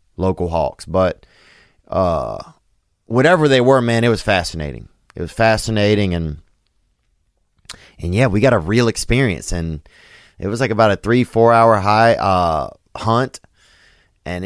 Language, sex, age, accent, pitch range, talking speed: English, male, 30-49, American, 85-110 Hz, 145 wpm